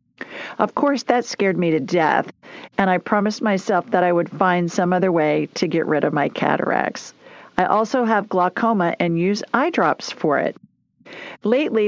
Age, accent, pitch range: 50-69, American, 170-220 Hz